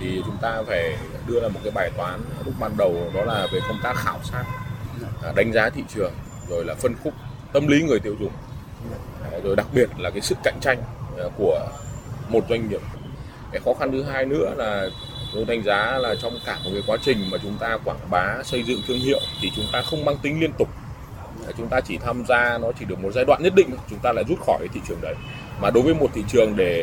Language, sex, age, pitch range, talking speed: Vietnamese, male, 20-39, 115-155 Hz, 240 wpm